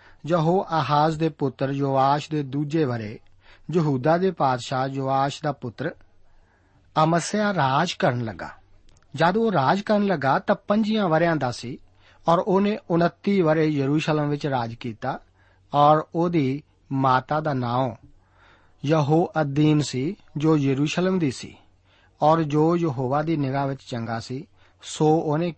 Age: 50-69